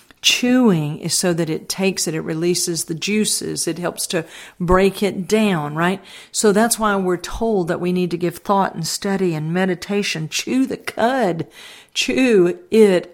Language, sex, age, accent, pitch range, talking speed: English, female, 50-69, American, 170-215 Hz, 175 wpm